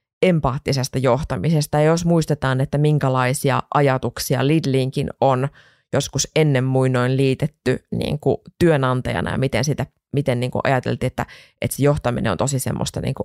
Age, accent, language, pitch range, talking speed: 20-39, native, Finnish, 130-155 Hz, 135 wpm